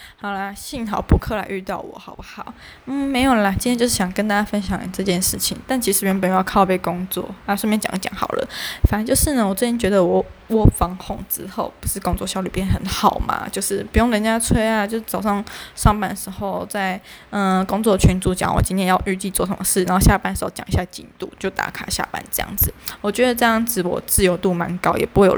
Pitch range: 190-220 Hz